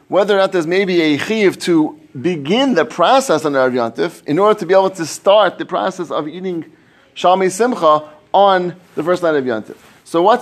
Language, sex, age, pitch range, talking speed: English, male, 30-49, 140-185 Hz, 195 wpm